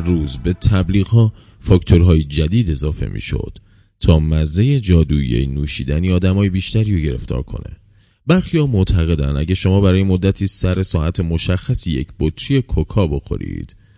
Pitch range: 85-110 Hz